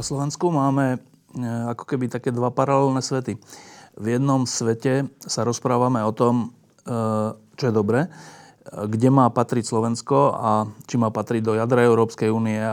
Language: Slovak